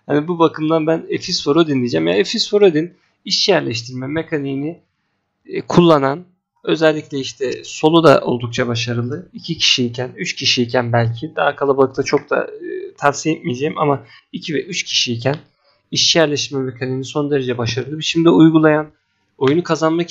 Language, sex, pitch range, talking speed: Turkish, male, 135-175 Hz, 145 wpm